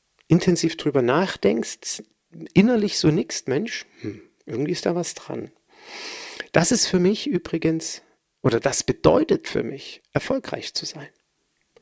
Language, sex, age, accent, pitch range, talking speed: German, male, 50-69, German, 160-235 Hz, 130 wpm